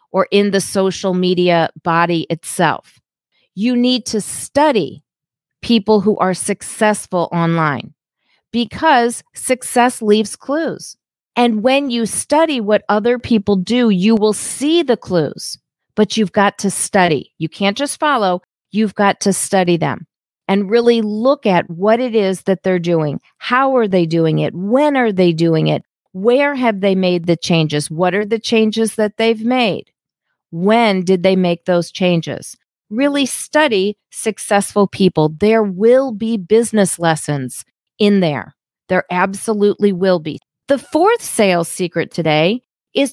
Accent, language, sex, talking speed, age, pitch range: American, English, female, 150 wpm, 40-59, 180-230 Hz